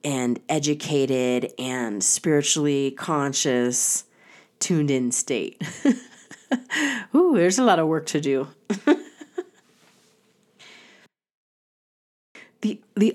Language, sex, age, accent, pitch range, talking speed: English, female, 30-49, American, 125-160 Hz, 80 wpm